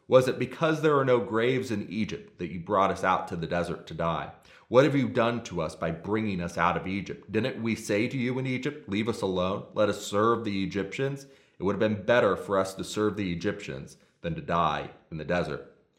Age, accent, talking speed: 30-49, American, 235 wpm